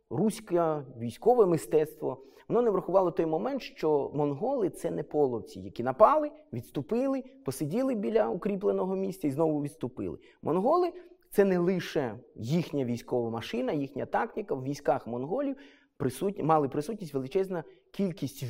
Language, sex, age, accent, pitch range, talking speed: Ukrainian, male, 20-39, native, 120-180 Hz, 135 wpm